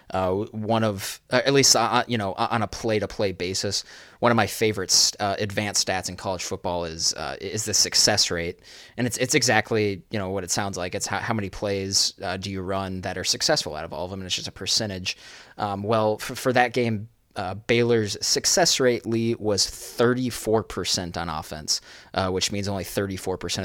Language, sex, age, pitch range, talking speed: English, male, 20-39, 90-110 Hz, 210 wpm